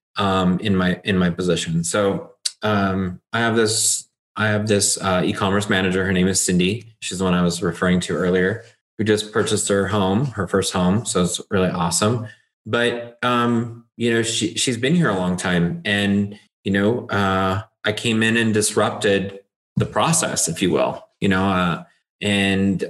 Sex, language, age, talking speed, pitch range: male, English, 20-39, 185 wpm, 95-110 Hz